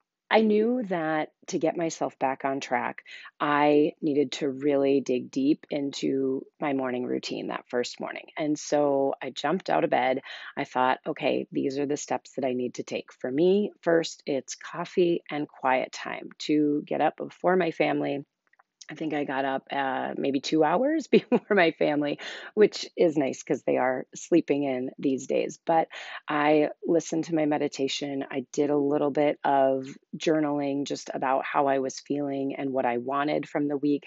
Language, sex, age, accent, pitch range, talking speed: English, female, 30-49, American, 135-170 Hz, 180 wpm